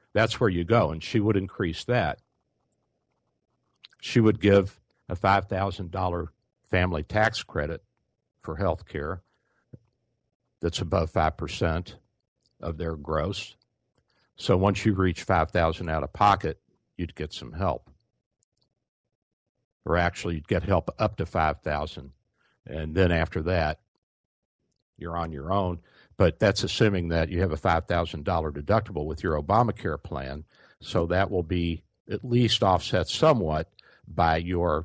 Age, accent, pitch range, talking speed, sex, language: 60-79, American, 80-95 Hz, 135 wpm, male, English